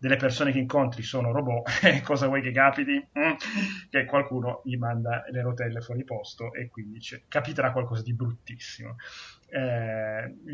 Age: 30-49